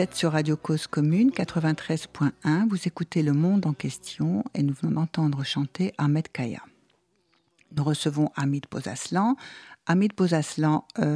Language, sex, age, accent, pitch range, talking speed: French, female, 60-79, French, 150-185 Hz, 135 wpm